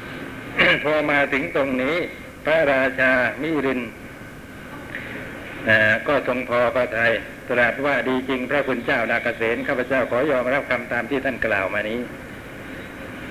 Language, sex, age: Thai, male, 60-79